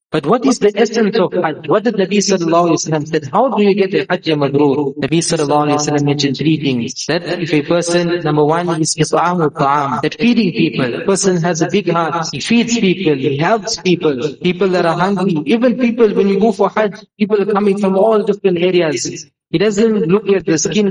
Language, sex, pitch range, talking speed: English, male, 160-200 Hz, 220 wpm